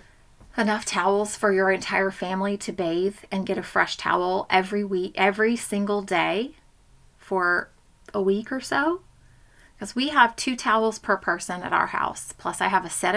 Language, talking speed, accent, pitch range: English, 175 wpm, American, 180-205 Hz